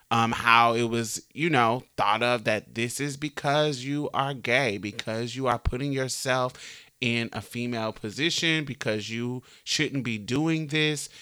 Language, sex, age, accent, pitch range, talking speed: English, male, 30-49, American, 110-140 Hz, 160 wpm